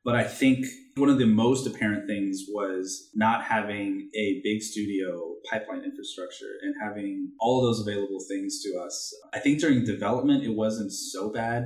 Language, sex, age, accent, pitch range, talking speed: English, male, 20-39, American, 100-135 Hz, 175 wpm